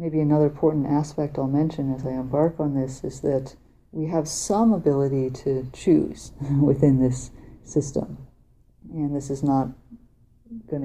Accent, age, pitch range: American, 50-69, 130-150 Hz